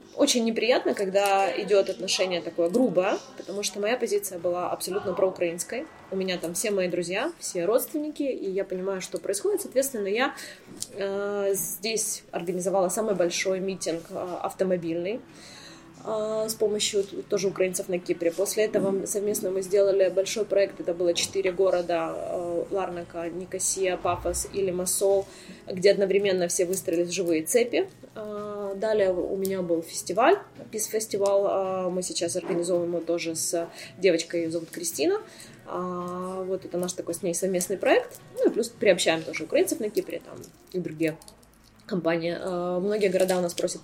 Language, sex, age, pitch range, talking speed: Russian, female, 20-39, 175-205 Hz, 150 wpm